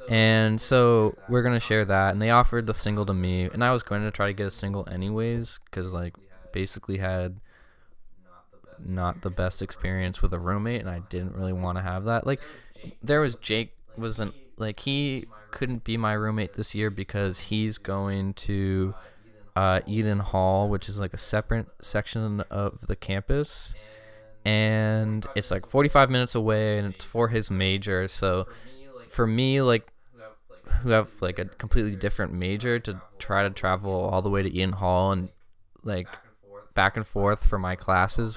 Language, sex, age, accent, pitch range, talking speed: English, male, 20-39, American, 95-115 Hz, 175 wpm